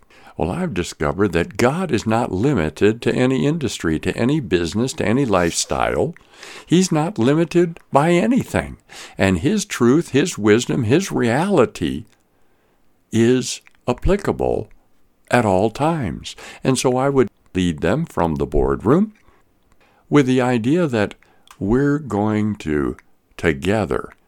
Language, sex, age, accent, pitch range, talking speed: English, male, 60-79, American, 100-155 Hz, 125 wpm